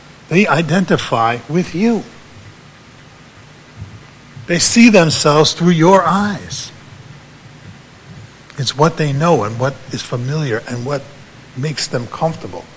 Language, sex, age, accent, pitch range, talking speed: English, male, 60-79, American, 130-170 Hz, 110 wpm